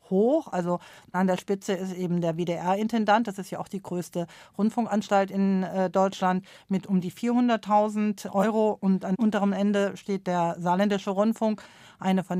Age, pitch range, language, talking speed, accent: 40-59, 180-200 Hz, German, 160 wpm, German